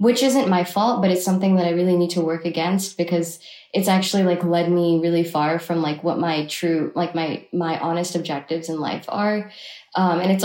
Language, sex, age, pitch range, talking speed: English, female, 20-39, 175-210 Hz, 220 wpm